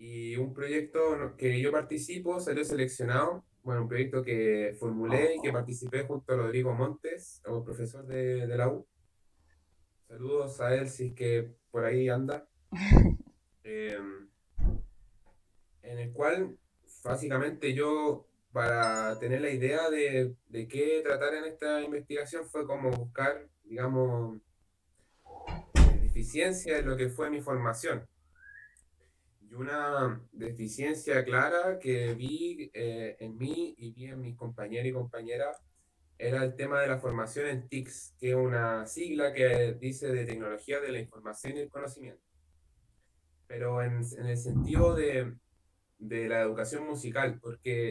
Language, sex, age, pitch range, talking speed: Spanish, male, 20-39, 110-145 Hz, 140 wpm